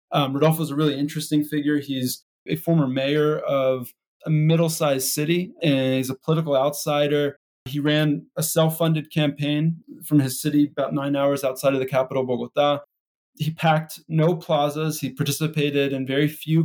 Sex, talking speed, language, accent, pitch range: male, 155 wpm, English, American, 135-155 Hz